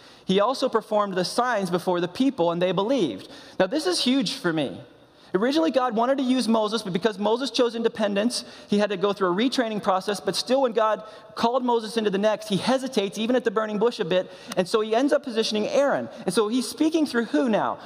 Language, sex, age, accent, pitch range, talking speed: English, male, 30-49, American, 165-235 Hz, 230 wpm